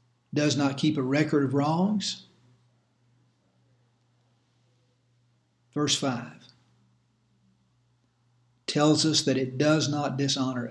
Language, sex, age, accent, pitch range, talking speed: English, male, 60-79, American, 120-165 Hz, 90 wpm